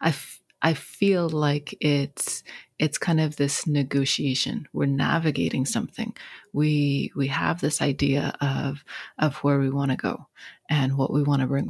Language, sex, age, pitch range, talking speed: English, female, 30-49, 135-155 Hz, 165 wpm